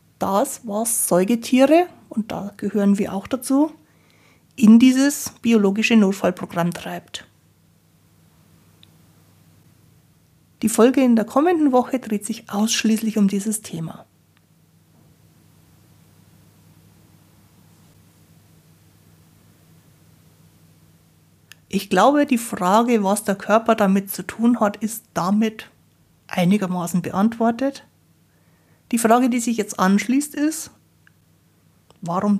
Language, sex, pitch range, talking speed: German, female, 180-245 Hz, 90 wpm